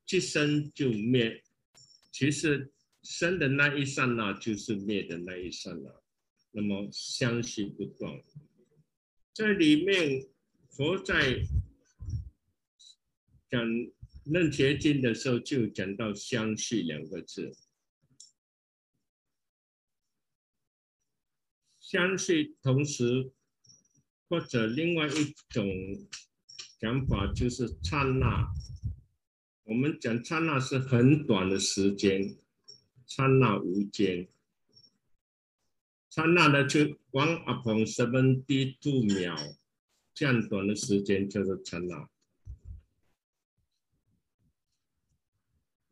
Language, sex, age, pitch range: Chinese, male, 60-79, 105-150 Hz